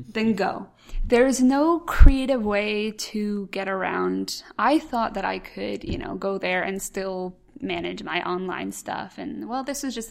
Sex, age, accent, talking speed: female, 20-39, American, 180 wpm